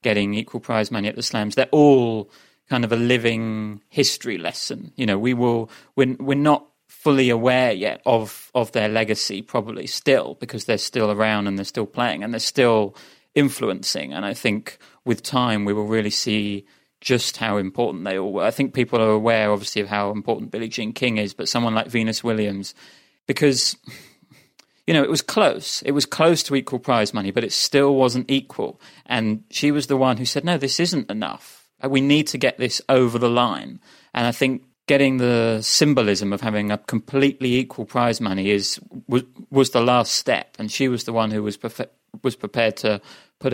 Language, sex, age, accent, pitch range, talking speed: English, male, 30-49, British, 105-130 Hz, 200 wpm